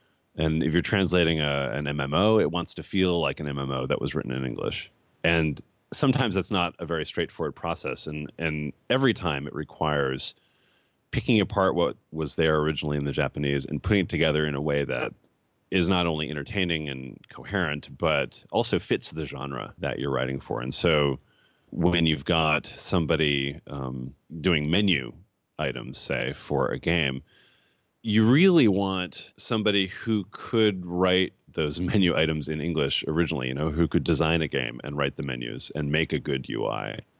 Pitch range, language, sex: 70-90 Hz, English, male